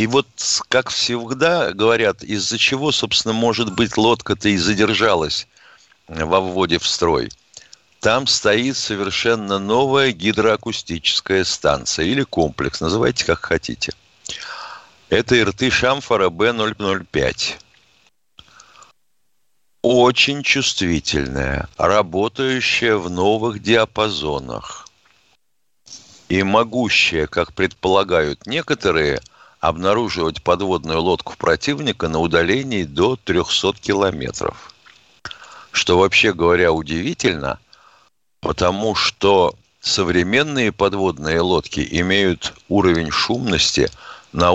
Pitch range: 95-115 Hz